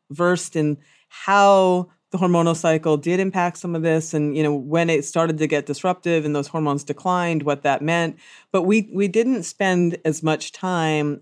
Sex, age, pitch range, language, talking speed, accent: female, 40-59, 150-195 Hz, English, 185 wpm, American